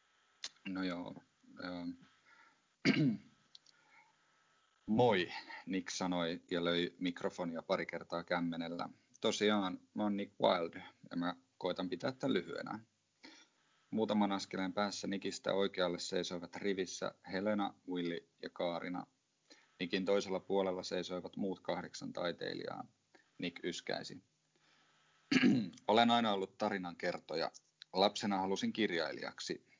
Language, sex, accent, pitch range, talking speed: Finnish, male, native, 90-100 Hz, 100 wpm